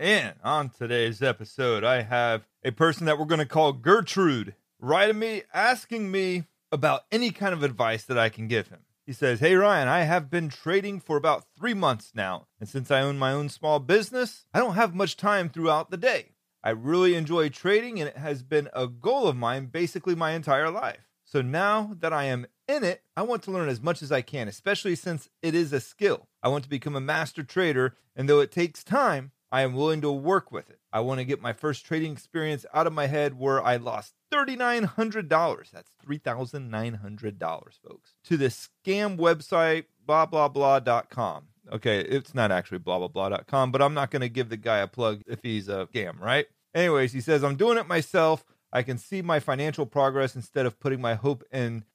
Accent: American